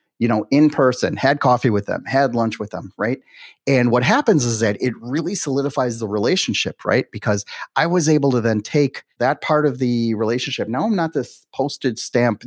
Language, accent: English, American